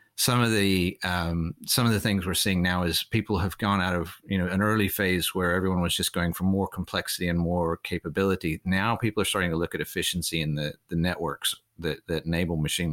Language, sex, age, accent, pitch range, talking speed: English, male, 40-59, American, 85-105 Hz, 225 wpm